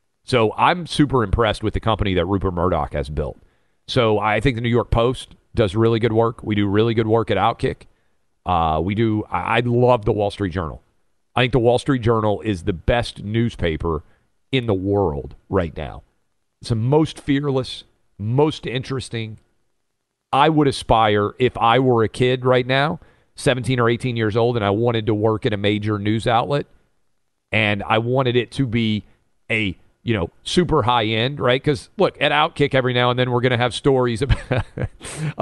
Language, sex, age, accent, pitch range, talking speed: English, male, 40-59, American, 110-135 Hz, 190 wpm